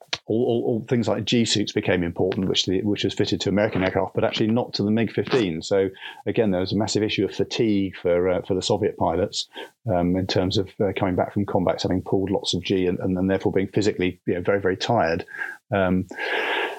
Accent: British